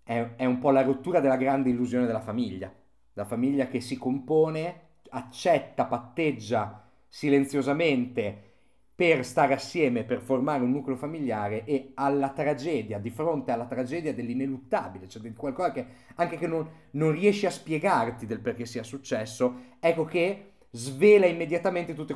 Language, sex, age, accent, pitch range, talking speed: Italian, male, 30-49, native, 120-175 Hz, 145 wpm